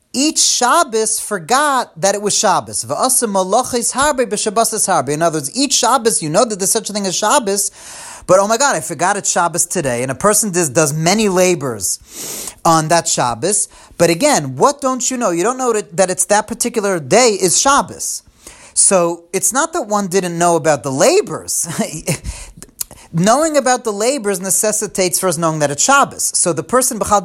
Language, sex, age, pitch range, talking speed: English, male, 30-49, 175-255 Hz, 180 wpm